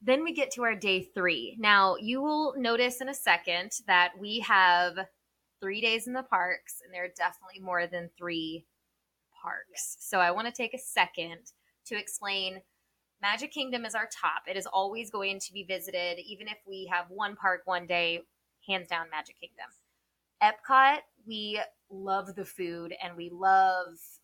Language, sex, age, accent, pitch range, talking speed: English, female, 20-39, American, 175-215 Hz, 175 wpm